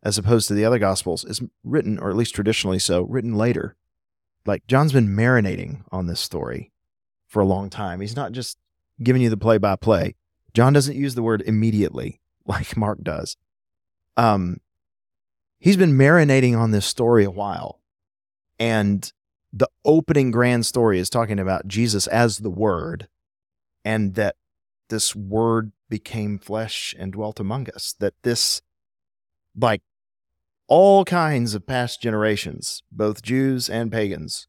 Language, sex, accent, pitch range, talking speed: English, male, American, 95-115 Hz, 150 wpm